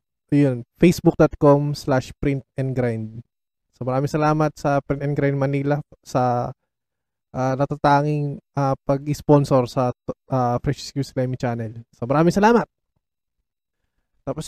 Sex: male